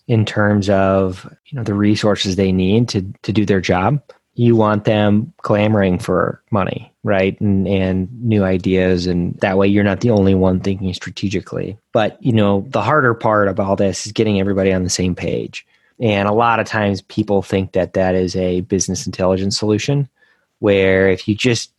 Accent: American